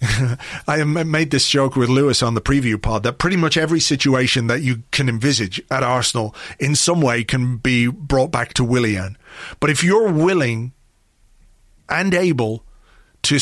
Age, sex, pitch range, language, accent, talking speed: 40-59, male, 120-150 Hz, English, British, 165 wpm